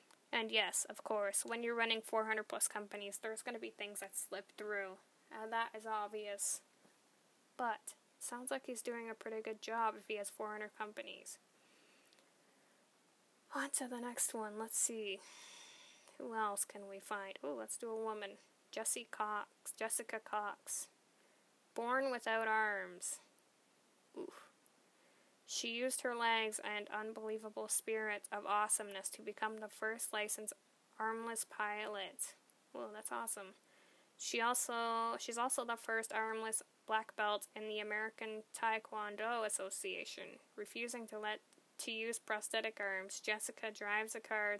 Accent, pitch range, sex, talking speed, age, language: American, 210-230 Hz, female, 140 wpm, 10-29, English